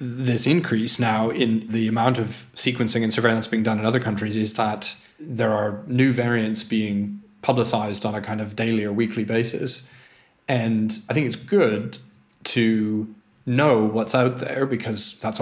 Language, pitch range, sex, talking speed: English, 110-125 Hz, male, 165 wpm